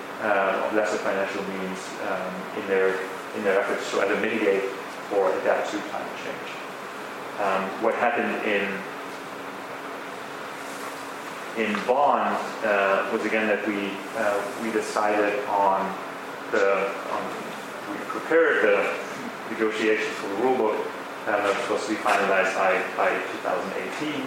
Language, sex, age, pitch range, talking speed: English, male, 30-49, 100-110 Hz, 130 wpm